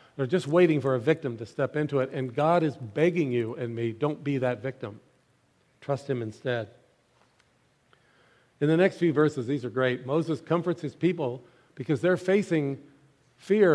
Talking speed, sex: 175 wpm, male